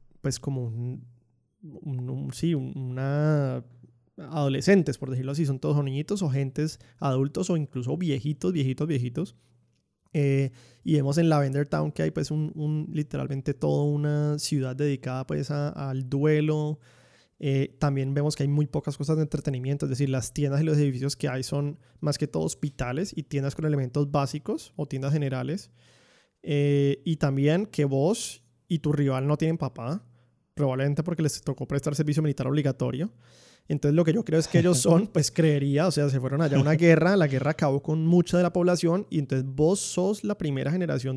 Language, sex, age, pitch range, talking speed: English, male, 20-39, 135-165 Hz, 185 wpm